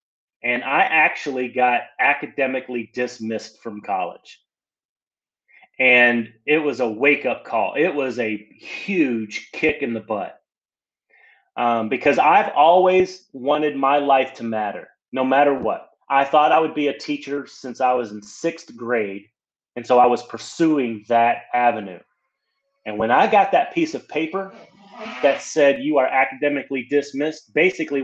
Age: 30-49